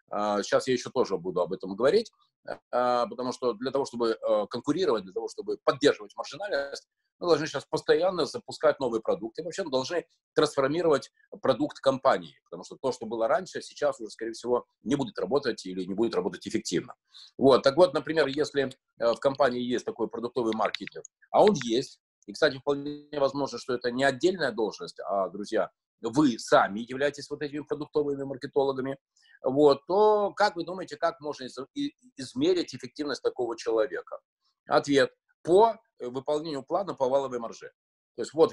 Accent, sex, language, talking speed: native, male, Russian, 160 wpm